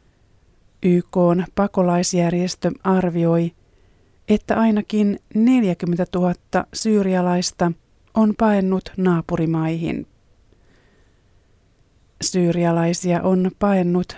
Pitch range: 170-195 Hz